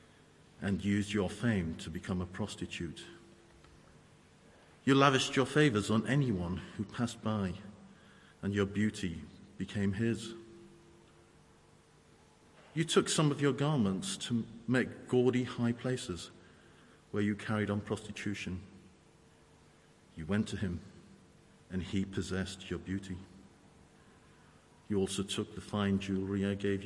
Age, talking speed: 50-69, 125 wpm